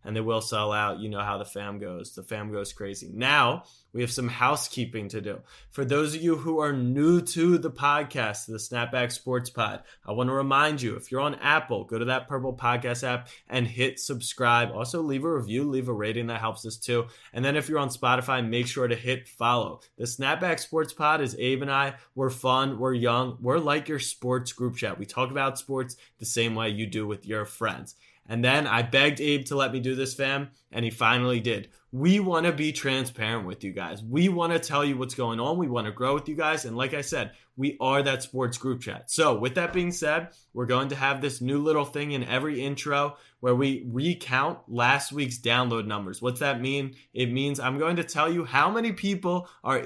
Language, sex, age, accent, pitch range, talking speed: English, male, 20-39, American, 120-145 Hz, 230 wpm